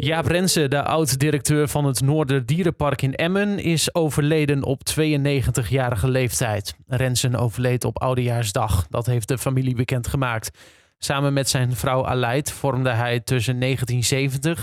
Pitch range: 125-150 Hz